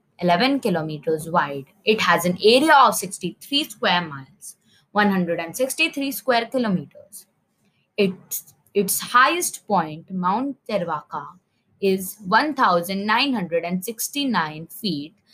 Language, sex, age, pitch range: English, female, 20-39, 180-235 Hz